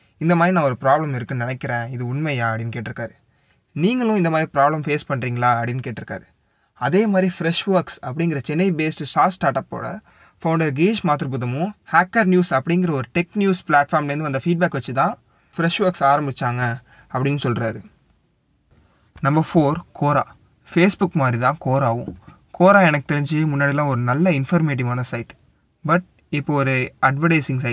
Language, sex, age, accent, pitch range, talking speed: Tamil, male, 20-39, native, 125-170 Hz, 145 wpm